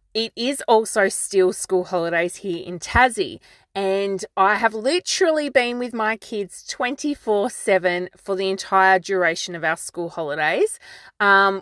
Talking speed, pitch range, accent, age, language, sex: 150 wpm, 180-225 Hz, Australian, 30-49, English, female